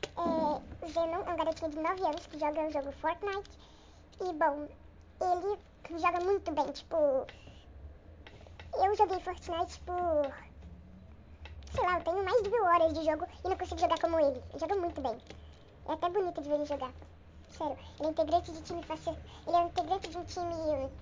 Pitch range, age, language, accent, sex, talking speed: 295-360 Hz, 10-29, Portuguese, Brazilian, male, 180 wpm